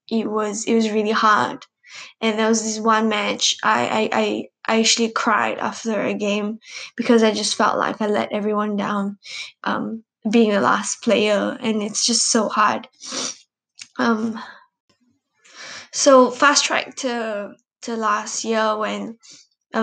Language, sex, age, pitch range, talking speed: English, female, 10-29, 210-235 Hz, 150 wpm